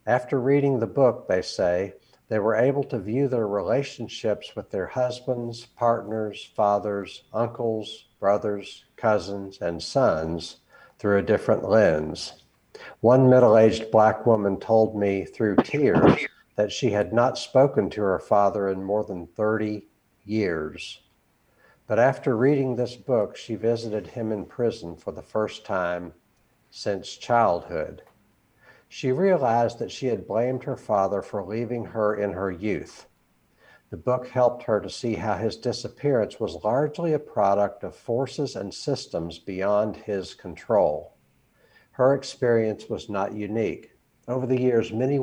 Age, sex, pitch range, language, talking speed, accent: 60-79, male, 100-120 Hz, English, 140 wpm, American